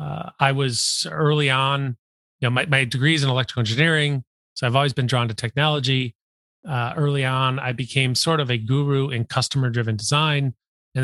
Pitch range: 120-140 Hz